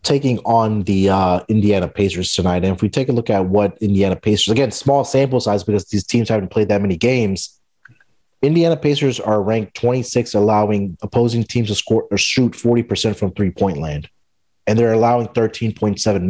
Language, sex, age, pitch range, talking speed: English, male, 30-49, 100-125 Hz, 180 wpm